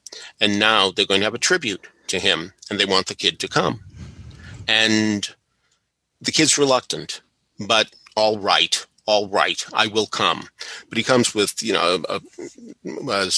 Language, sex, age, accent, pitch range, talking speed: English, male, 50-69, American, 105-150 Hz, 160 wpm